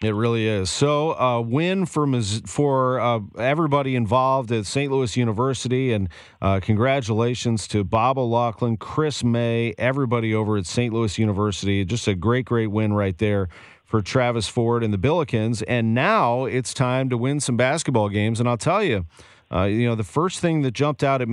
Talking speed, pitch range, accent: 185 wpm, 105-130 Hz, American